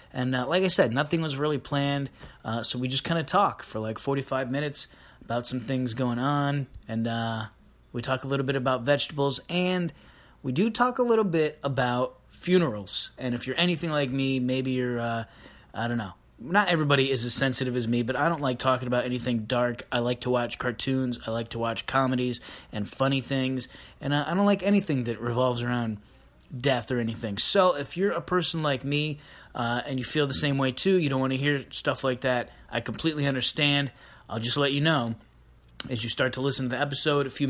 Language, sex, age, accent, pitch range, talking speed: English, male, 20-39, American, 120-145 Hz, 220 wpm